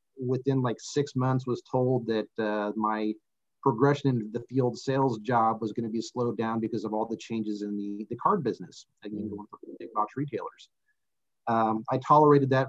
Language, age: English, 40-59